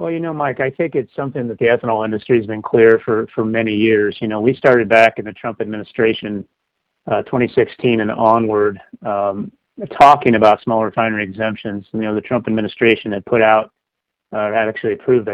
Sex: male